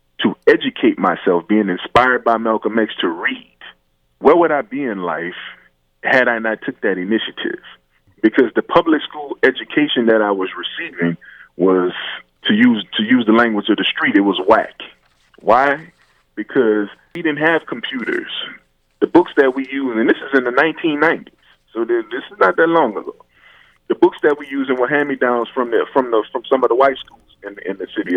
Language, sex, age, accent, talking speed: English, male, 30-49, American, 190 wpm